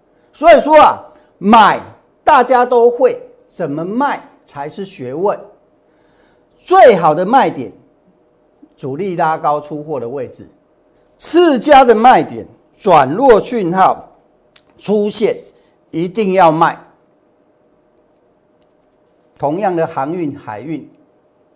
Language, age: Chinese, 50-69